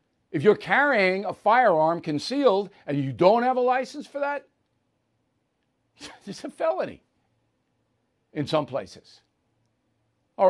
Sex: male